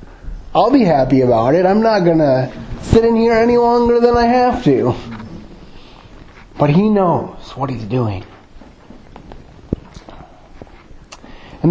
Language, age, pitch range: English, 30-49, 175-235 Hz